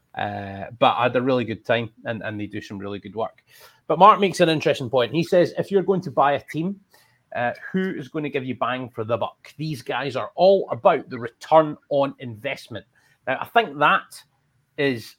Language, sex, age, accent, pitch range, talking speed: English, male, 30-49, British, 115-145 Hz, 220 wpm